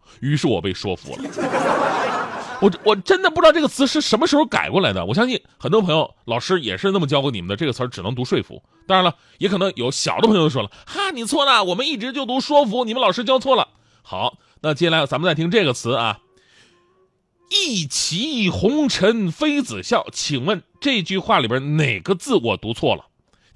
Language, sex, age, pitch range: Chinese, male, 30-49, 175-290 Hz